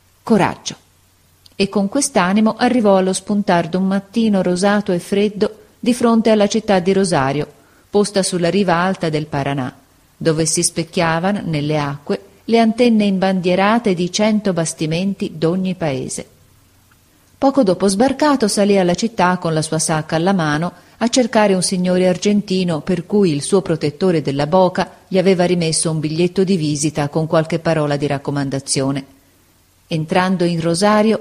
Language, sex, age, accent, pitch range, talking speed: Italian, female, 40-59, native, 155-195 Hz, 145 wpm